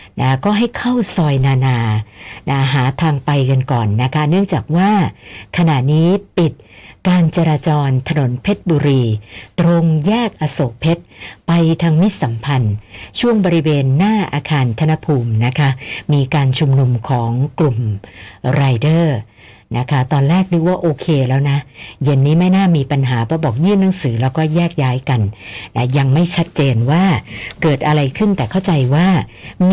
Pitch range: 125-165 Hz